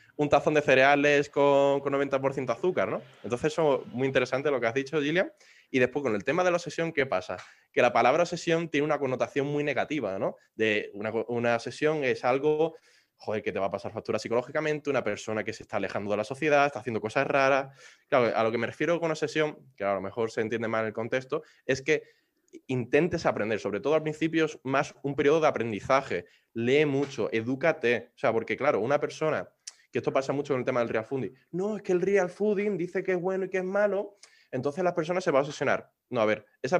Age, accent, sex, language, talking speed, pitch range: 20-39, Spanish, male, English, 230 wpm, 125-160 Hz